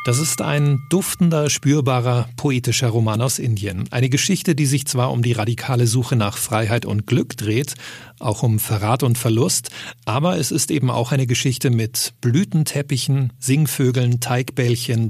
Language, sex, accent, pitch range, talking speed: German, male, German, 115-140 Hz, 155 wpm